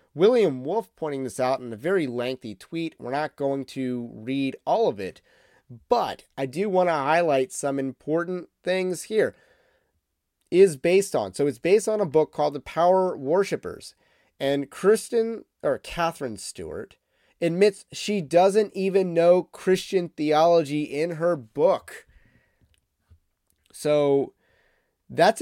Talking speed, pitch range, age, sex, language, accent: 135 wpm, 135-185 Hz, 30-49, male, English, American